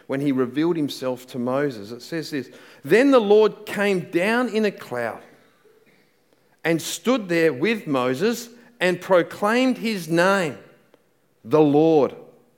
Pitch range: 150-205 Hz